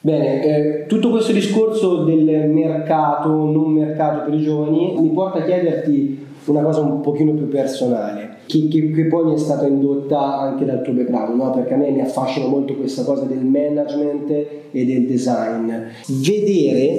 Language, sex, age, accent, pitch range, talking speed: Italian, male, 20-39, native, 130-155 Hz, 175 wpm